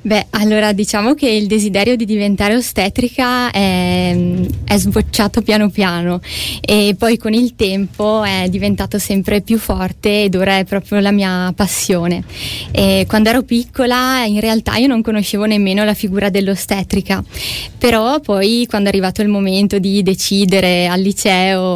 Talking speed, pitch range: 150 wpm, 190-220 Hz